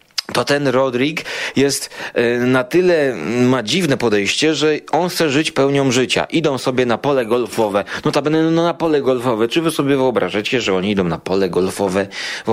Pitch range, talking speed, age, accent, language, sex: 125-160 Hz, 185 wpm, 30-49, native, Polish, male